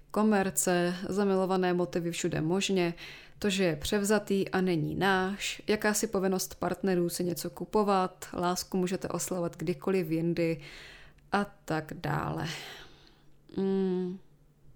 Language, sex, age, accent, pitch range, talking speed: Czech, female, 20-39, native, 165-190 Hz, 110 wpm